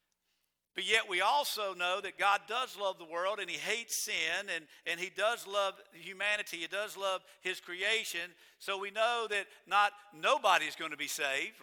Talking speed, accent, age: 180 wpm, American, 50-69